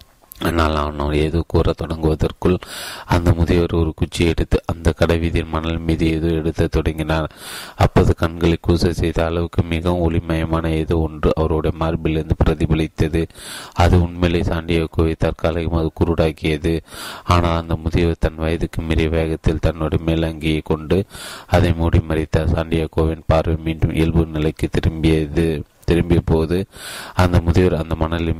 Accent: native